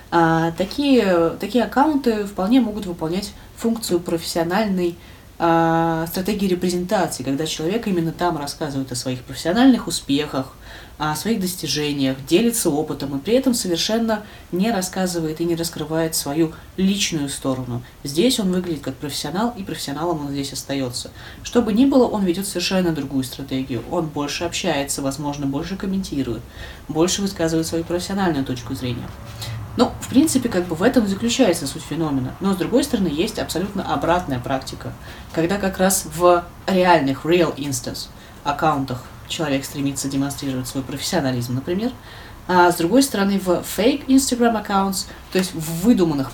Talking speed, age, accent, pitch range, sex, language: 145 wpm, 20-39, native, 145-190 Hz, female, Russian